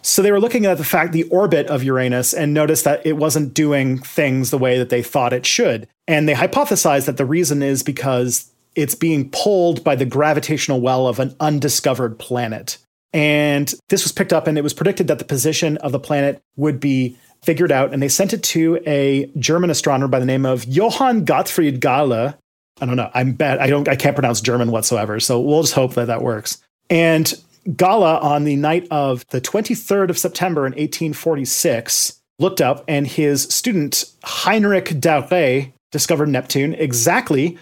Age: 40-59